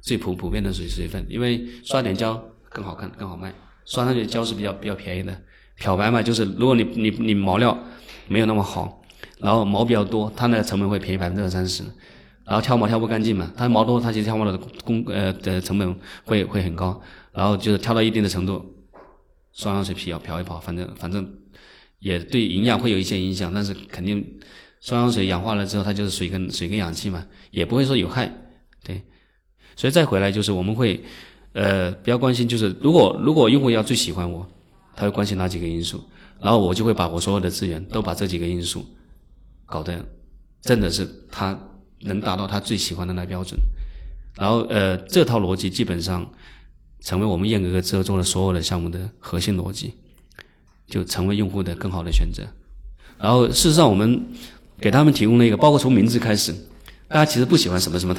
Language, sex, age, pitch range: Chinese, male, 20-39, 90-110 Hz